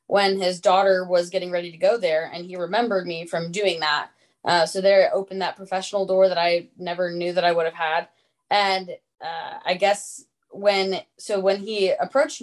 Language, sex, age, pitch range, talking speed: English, female, 20-39, 175-210 Hz, 200 wpm